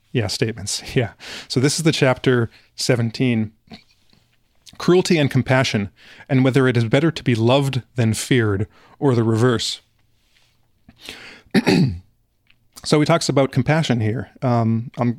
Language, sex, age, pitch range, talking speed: English, male, 30-49, 115-145 Hz, 125 wpm